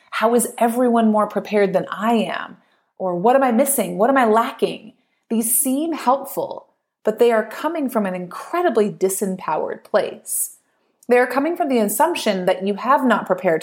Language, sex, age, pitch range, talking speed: English, female, 30-49, 195-255 Hz, 170 wpm